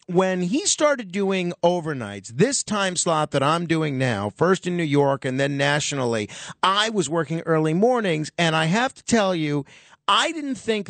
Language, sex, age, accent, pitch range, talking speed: English, male, 40-59, American, 150-210 Hz, 180 wpm